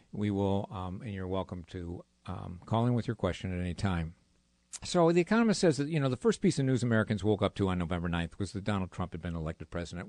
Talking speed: 255 wpm